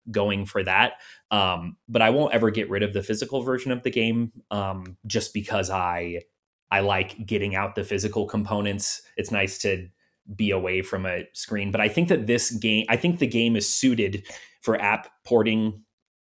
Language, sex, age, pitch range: English, male, 20-39, 95-115 Hz